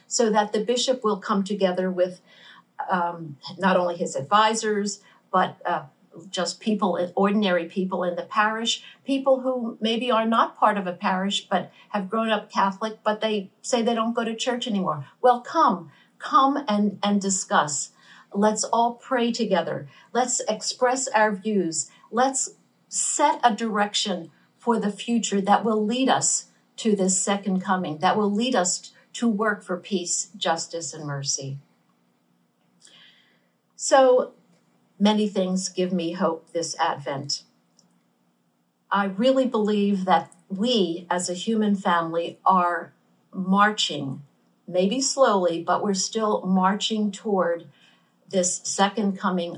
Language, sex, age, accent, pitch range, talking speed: English, female, 50-69, American, 170-220 Hz, 140 wpm